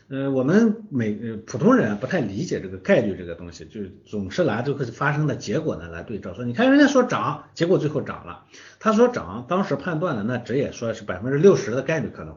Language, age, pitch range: Chinese, 50-69, 105-175 Hz